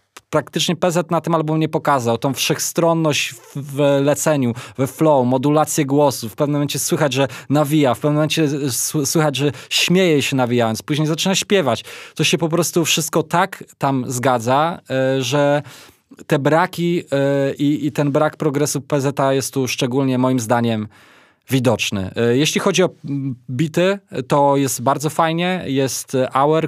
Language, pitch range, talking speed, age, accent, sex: Polish, 115-145 Hz, 145 wpm, 20-39, native, male